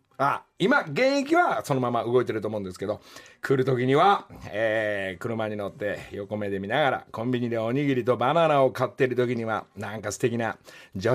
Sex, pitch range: male, 115-155 Hz